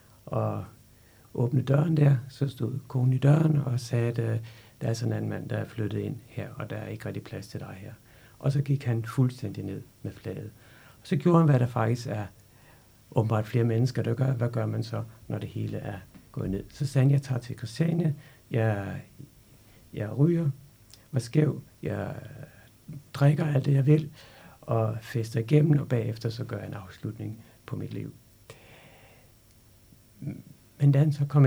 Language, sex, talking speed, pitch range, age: Danish, male, 185 wpm, 110-135 Hz, 60-79